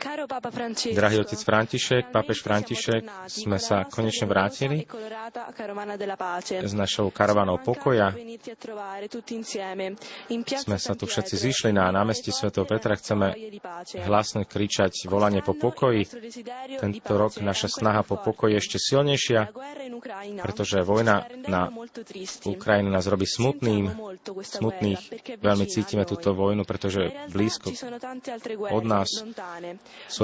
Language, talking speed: Slovak, 105 wpm